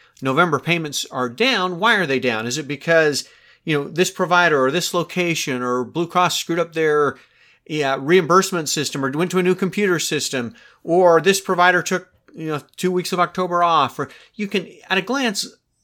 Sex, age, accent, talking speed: male, 40-59, American, 195 wpm